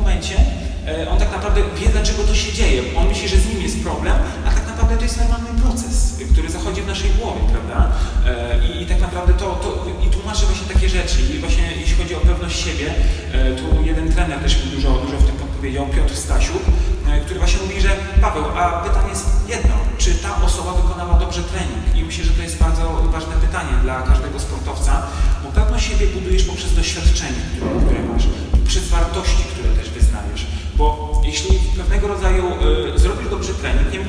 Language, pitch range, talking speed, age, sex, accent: Polish, 70-80 Hz, 185 wpm, 30-49, male, native